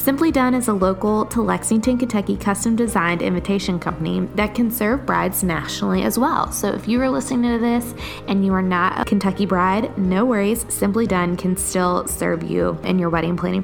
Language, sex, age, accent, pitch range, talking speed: English, female, 20-39, American, 185-240 Hz, 200 wpm